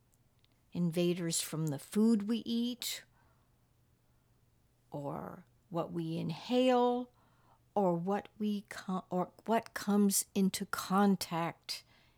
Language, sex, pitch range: English, female, 155-230 Hz